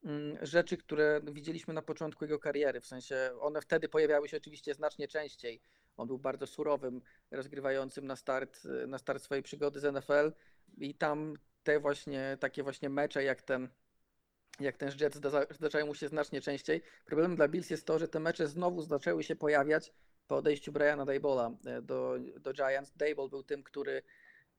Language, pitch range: Polish, 140-160 Hz